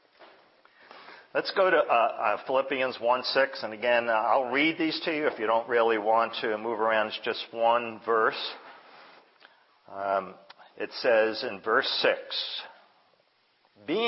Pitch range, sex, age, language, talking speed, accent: 115-160 Hz, male, 50-69, English, 145 wpm, American